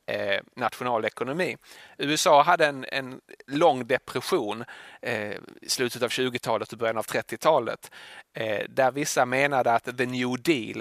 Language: English